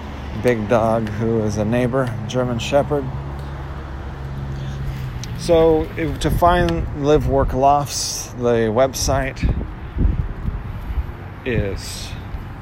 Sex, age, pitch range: male, 30-49, 100-130 Hz